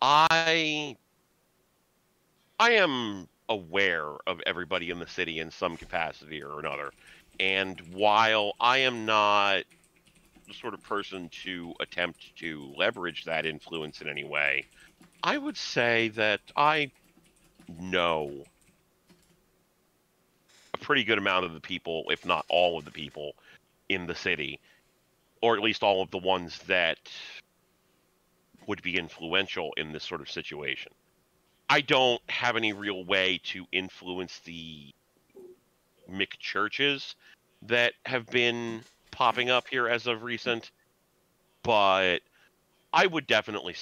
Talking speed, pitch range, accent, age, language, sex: 125 wpm, 90-120 Hz, American, 40-59, English, male